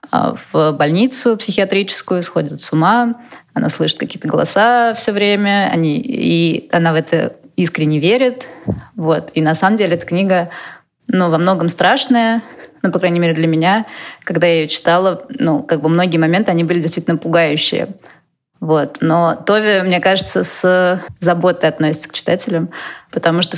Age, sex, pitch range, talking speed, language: 20-39, female, 165-200 Hz, 160 wpm, Russian